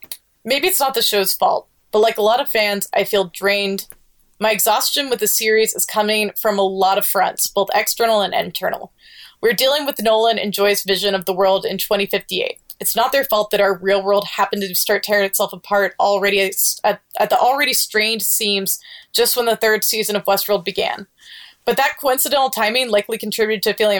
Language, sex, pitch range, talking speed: English, female, 200-230 Hz, 205 wpm